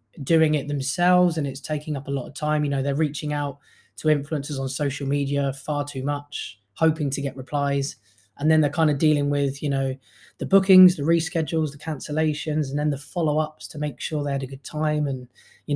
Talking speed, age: 215 wpm, 20-39